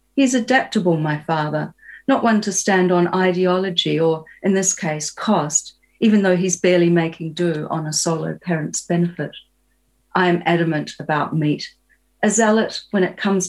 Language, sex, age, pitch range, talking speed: English, female, 40-59, 160-205 Hz, 160 wpm